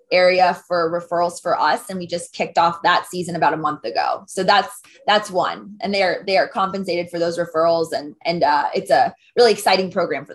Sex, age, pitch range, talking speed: female, 20-39, 170-205 Hz, 220 wpm